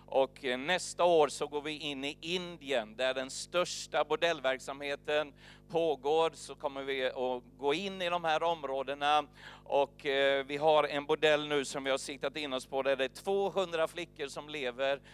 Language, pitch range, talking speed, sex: Swedish, 135-160 Hz, 180 wpm, male